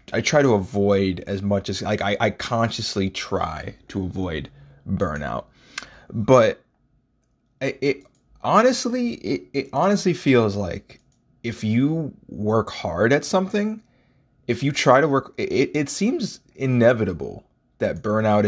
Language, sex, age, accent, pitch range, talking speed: English, male, 20-39, American, 100-140 Hz, 135 wpm